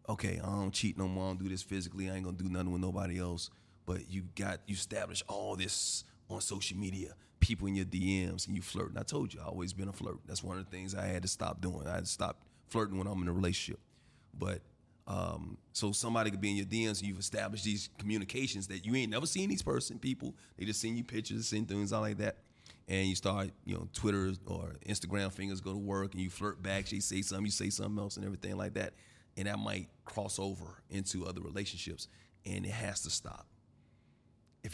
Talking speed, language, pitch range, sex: 240 wpm, English, 95-110 Hz, male